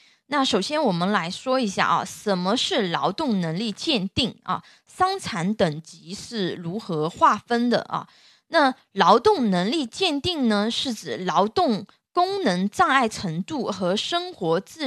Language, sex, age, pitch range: Chinese, female, 20-39, 190-275 Hz